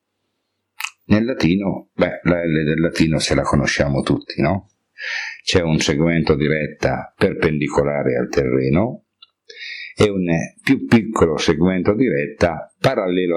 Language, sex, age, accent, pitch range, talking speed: Italian, male, 50-69, native, 80-100 Hz, 115 wpm